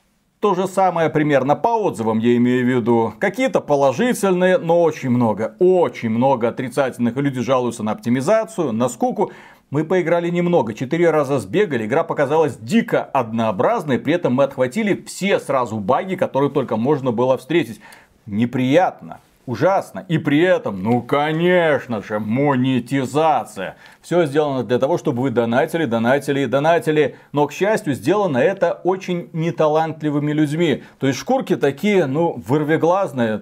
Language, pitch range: Russian, 135-190 Hz